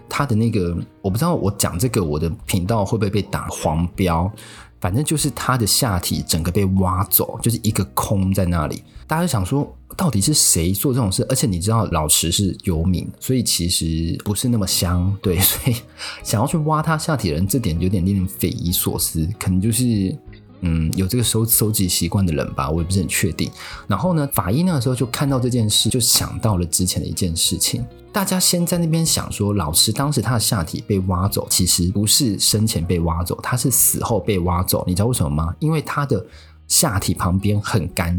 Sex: male